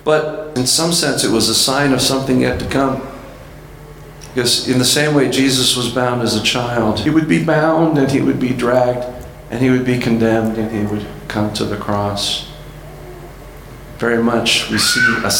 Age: 50-69